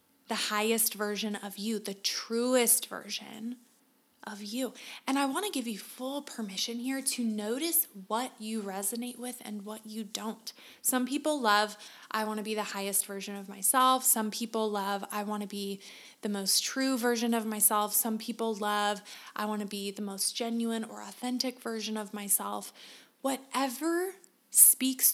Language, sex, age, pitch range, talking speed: English, female, 20-39, 215-260 Hz, 170 wpm